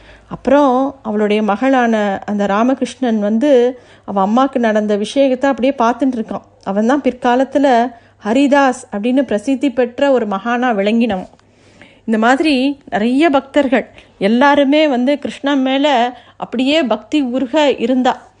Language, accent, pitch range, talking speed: Tamil, native, 215-265 Hz, 110 wpm